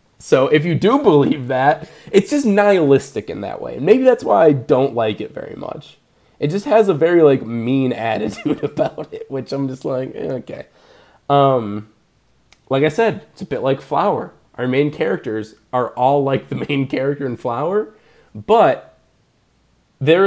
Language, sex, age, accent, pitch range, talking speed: English, male, 20-39, American, 125-160 Hz, 170 wpm